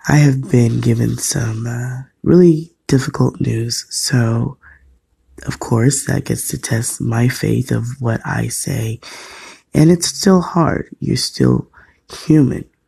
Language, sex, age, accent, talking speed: English, male, 20-39, American, 135 wpm